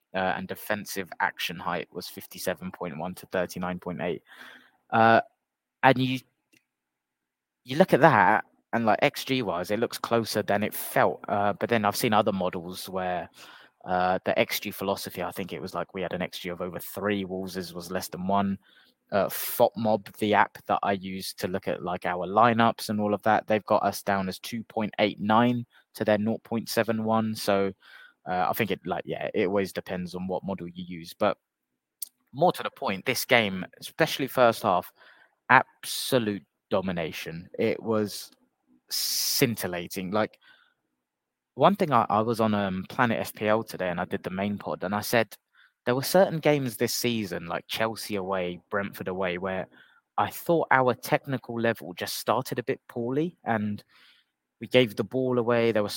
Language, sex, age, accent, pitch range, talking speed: English, male, 20-39, British, 95-120 Hz, 175 wpm